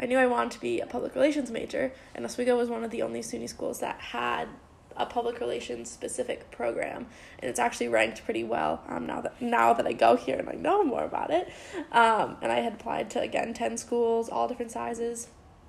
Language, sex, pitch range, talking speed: English, female, 240-290 Hz, 225 wpm